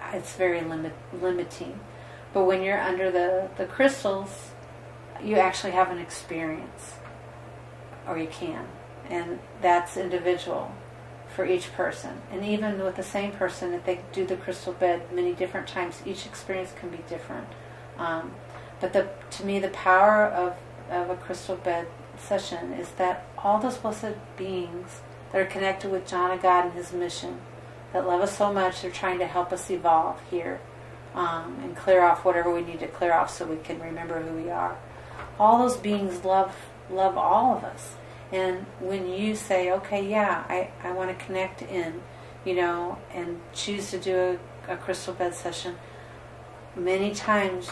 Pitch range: 170-190 Hz